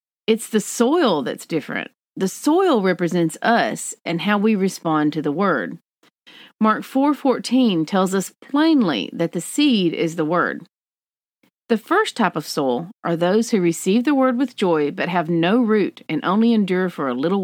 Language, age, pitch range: English, 40-59, 170-250 Hz